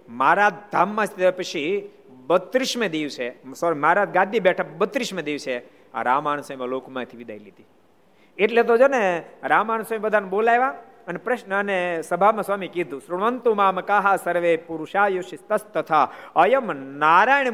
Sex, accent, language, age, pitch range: male, native, Gujarati, 50-69, 155-220 Hz